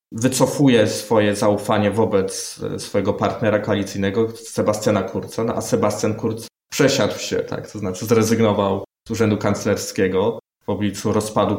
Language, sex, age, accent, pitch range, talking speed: Polish, male, 20-39, native, 100-115 Hz, 130 wpm